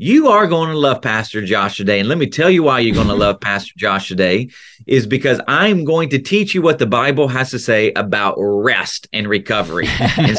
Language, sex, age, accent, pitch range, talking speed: English, male, 30-49, American, 120-180 Hz, 225 wpm